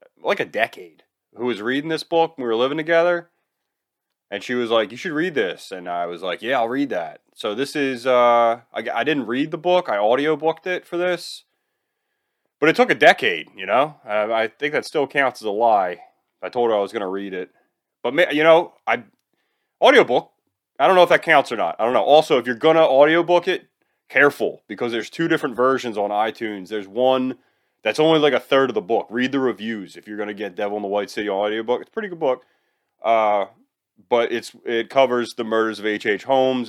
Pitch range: 115-155 Hz